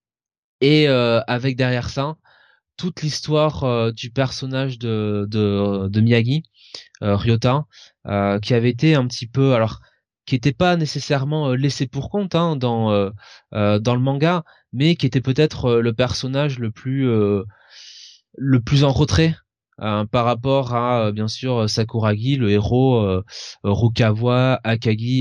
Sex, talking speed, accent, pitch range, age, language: male, 155 wpm, French, 105-130 Hz, 20-39, French